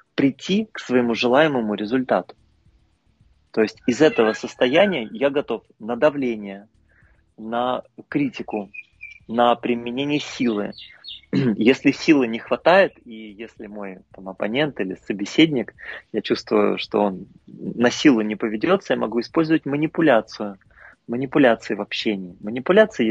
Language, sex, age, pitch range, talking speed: Russian, male, 30-49, 105-140 Hz, 120 wpm